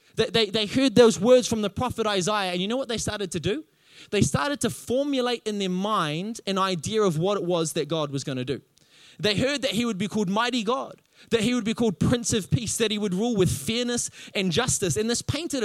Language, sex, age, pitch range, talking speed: English, male, 20-39, 180-235 Hz, 240 wpm